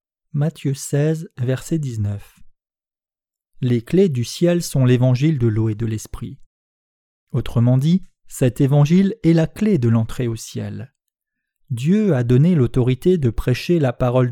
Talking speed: 145 wpm